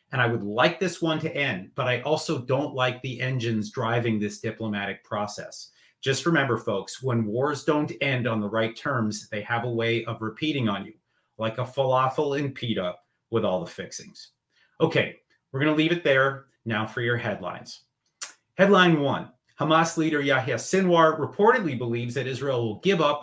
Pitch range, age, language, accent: 115-155 Hz, 30-49, English, American